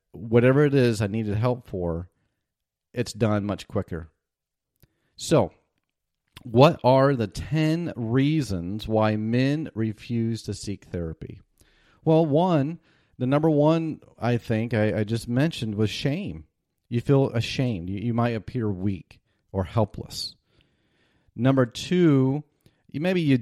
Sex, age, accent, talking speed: male, 40-59, American, 130 wpm